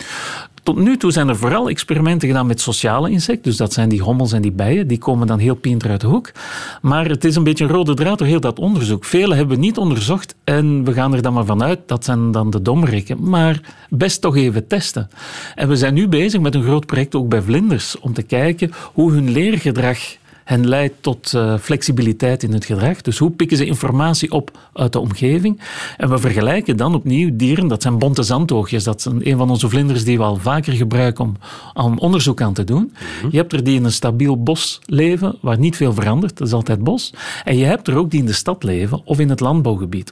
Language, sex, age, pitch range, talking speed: Dutch, male, 40-59, 120-160 Hz, 230 wpm